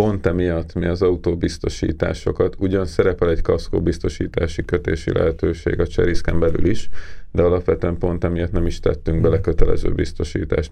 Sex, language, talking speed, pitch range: male, Hungarian, 145 wpm, 85-90 Hz